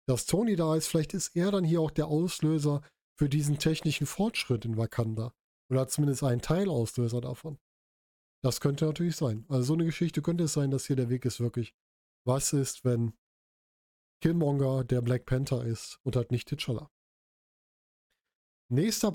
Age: 10-29